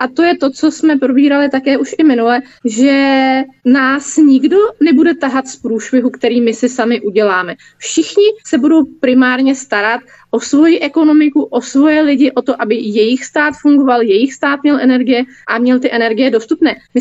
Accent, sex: native, female